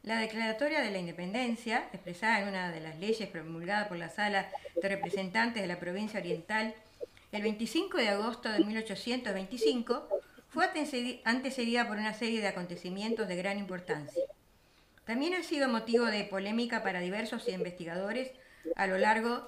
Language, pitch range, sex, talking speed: Spanish, 200-260 Hz, female, 150 wpm